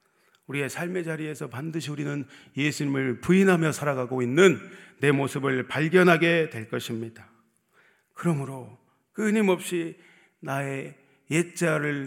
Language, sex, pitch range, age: Korean, male, 135-180 Hz, 40-59